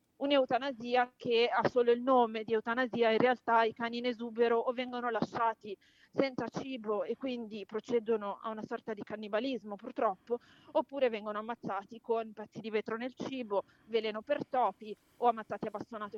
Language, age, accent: English, 30-49, Italian